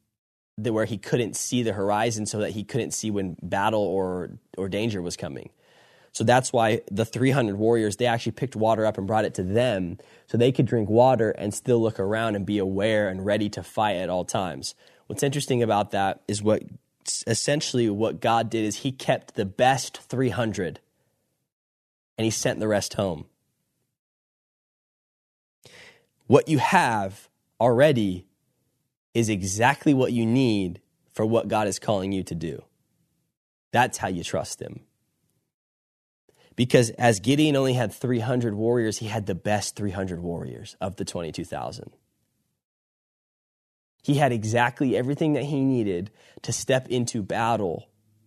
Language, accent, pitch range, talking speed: English, American, 100-125 Hz, 155 wpm